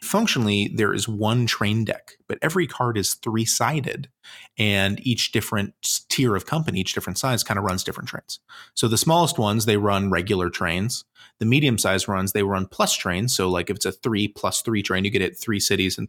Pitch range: 95-115 Hz